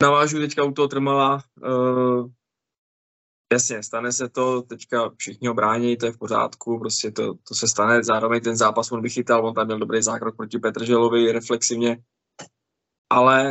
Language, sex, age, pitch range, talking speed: Czech, male, 20-39, 115-125 Hz, 160 wpm